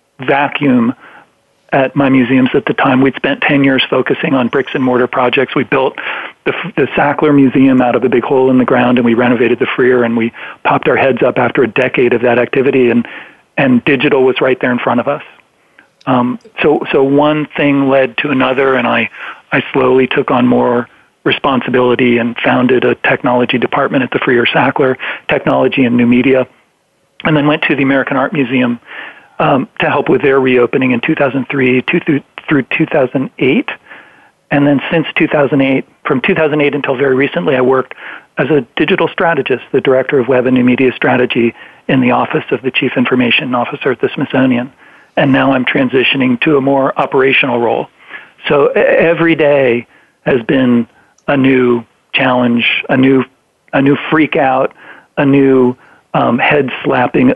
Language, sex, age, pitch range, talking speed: English, male, 40-59, 125-140 Hz, 175 wpm